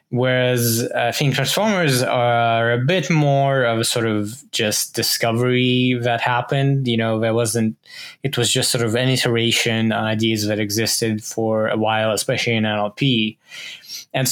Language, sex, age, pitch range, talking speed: English, male, 20-39, 110-130 Hz, 155 wpm